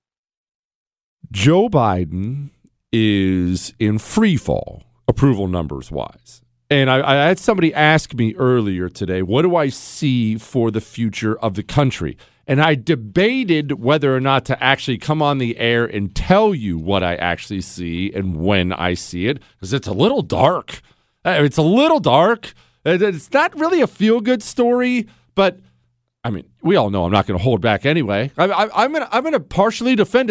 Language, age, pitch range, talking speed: English, 40-59, 105-165 Hz, 175 wpm